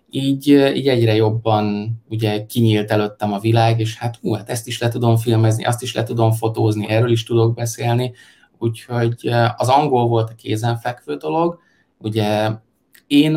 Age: 20-39